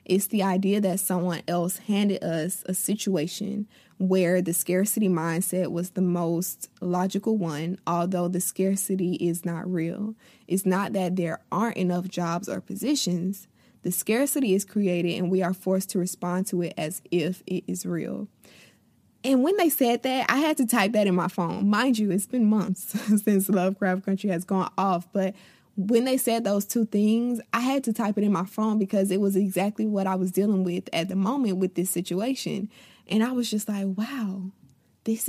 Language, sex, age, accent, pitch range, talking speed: English, female, 20-39, American, 180-210 Hz, 190 wpm